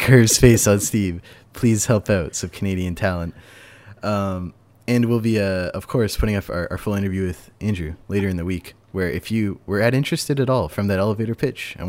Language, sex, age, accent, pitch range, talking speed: English, male, 20-39, American, 90-115 Hz, 210 wpm